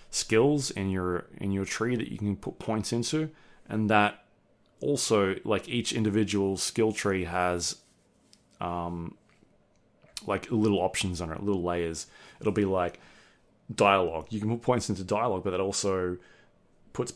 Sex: male